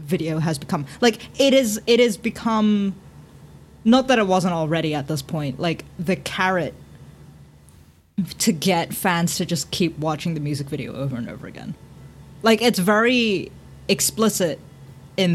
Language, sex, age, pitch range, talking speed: English, female, 20-39, 155-205 Hz, 155 wpm